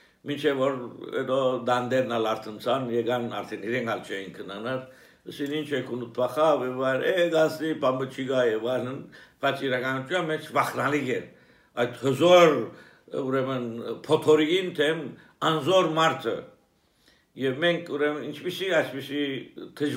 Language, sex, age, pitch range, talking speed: English, male, 60-79, 125-160 Hz, 55 wpm